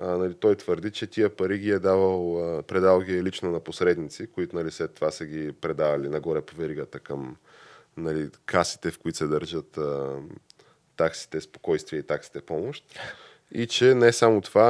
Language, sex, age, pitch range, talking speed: Bulgarian, male, 20-39, 90-105 Hz, 155 wpm